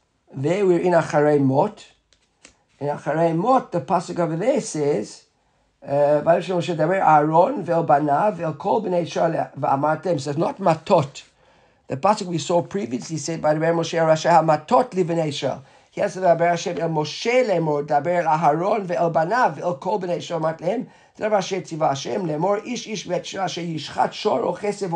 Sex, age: male, 50-69